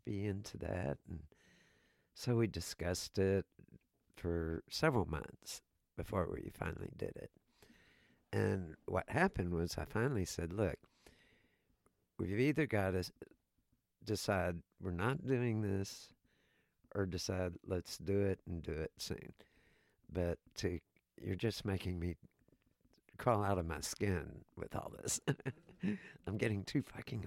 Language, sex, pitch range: English, male, 90-125 Hz